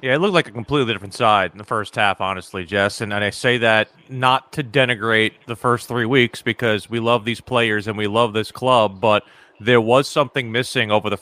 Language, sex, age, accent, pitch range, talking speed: English, male, 30-49, American, 115-135 Hz, 230 wpm